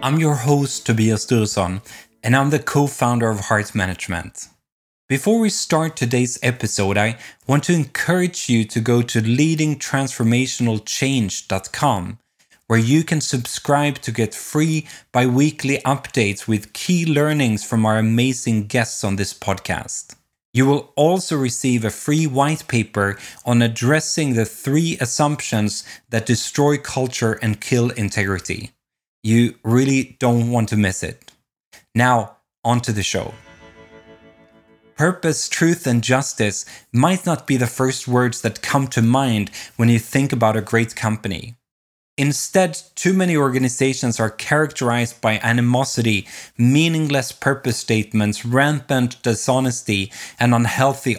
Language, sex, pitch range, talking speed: English, male, 110-140 Hz, 130 wpm